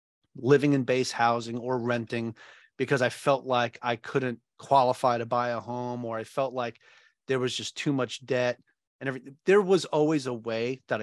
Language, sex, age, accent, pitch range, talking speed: English, male, 30-49, American, 120-155 Hz, 190 wpm